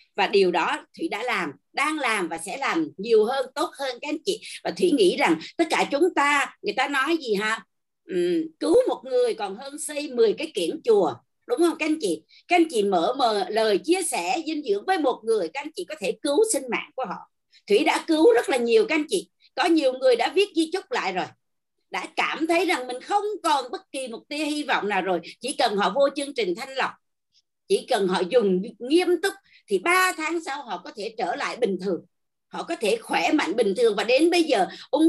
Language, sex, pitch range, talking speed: Vietnamese, female, 280-390 Hz, 240 wpm